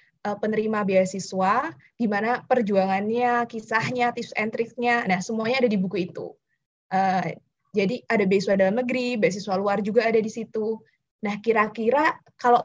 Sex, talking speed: female, 140 wpm